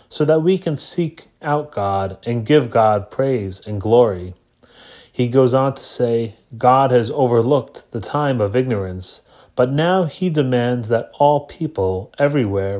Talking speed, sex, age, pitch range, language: 155 wpm, male, 30-49, 105-140 Hz, English